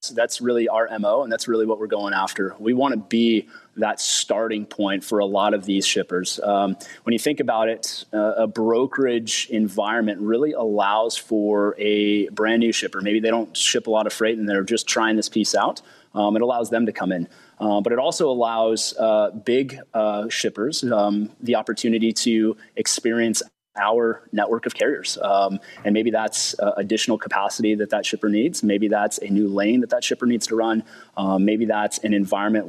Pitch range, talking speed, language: 105-115 Hz, 200 wpm, English